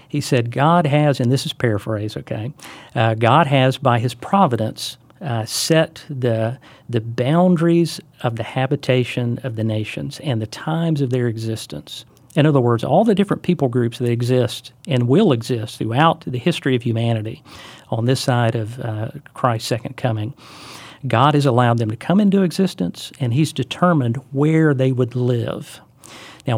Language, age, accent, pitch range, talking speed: English, 50-69, American, 120-160 Hz, 165 wpm